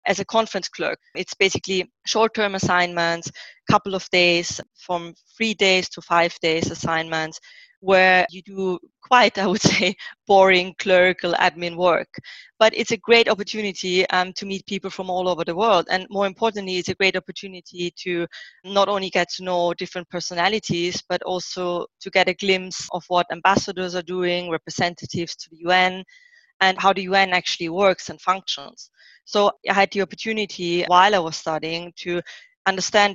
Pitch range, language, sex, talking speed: 175-200 Hz, English, female, 170 wpm